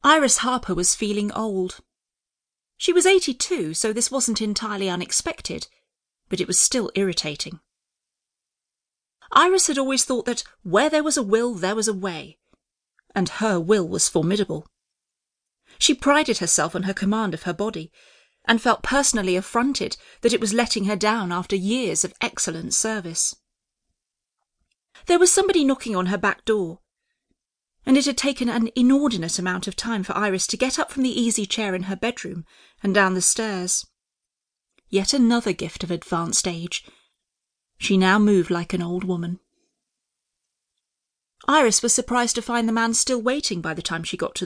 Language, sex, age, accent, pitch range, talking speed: English, female, 40-59, British, 185-245 Hz, 165 wpm